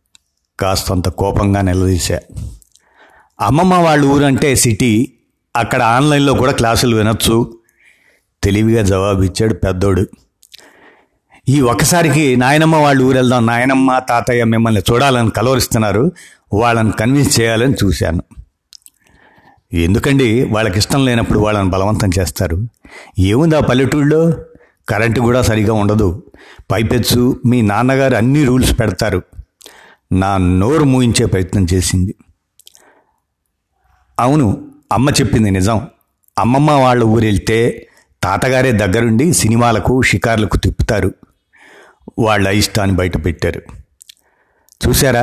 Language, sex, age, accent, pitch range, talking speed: Telugu, male, 60-79, native, 105-130 Hz, 95 wpm